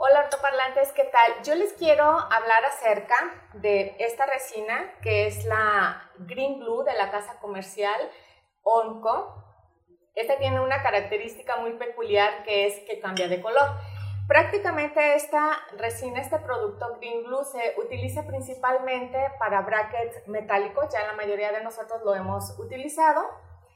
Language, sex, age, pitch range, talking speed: Spanish, female, 30-49, 200-275 Hz, 140 wpm